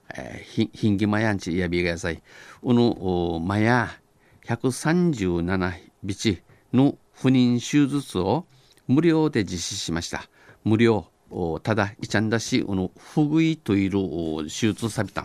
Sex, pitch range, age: male, 90-120 Hz, 50-69